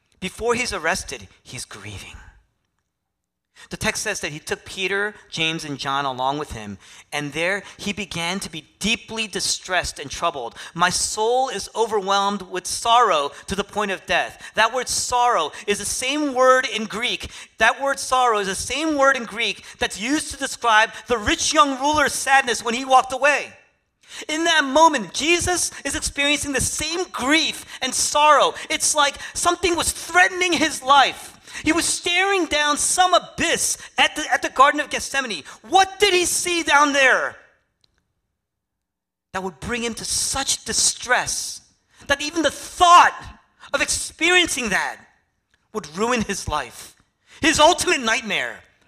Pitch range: 185-295 Hz